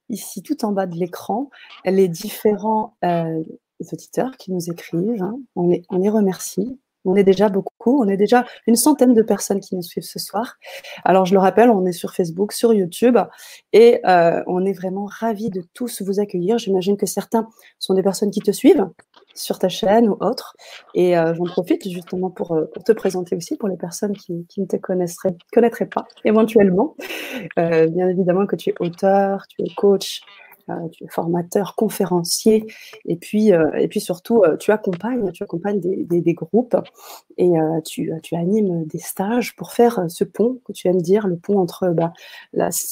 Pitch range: 180-225 Hz